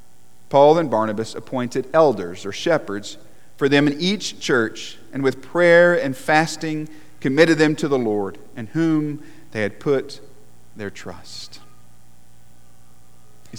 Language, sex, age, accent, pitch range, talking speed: English, male, 40-59, American, 105-155 Hz, 130 wpm